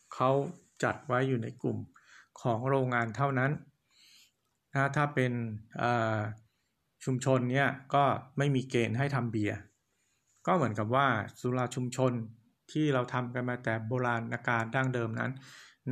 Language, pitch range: Thai, 115-135 Hz